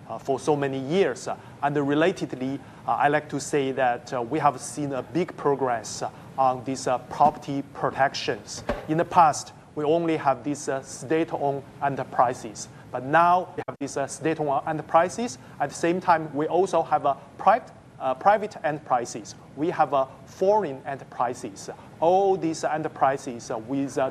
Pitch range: 135-160 Hz